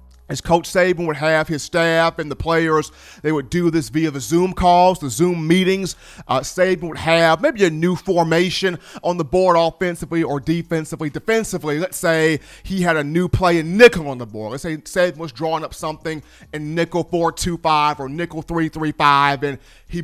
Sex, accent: male, American